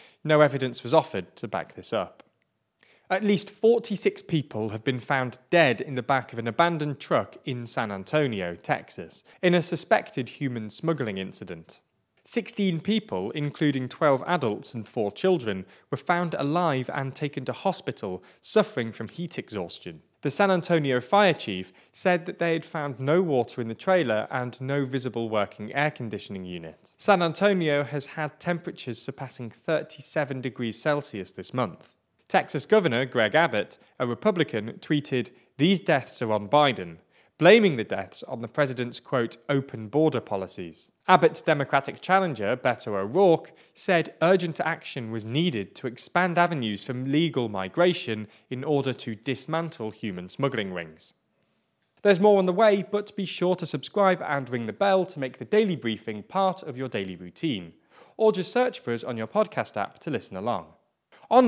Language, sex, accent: English, male, British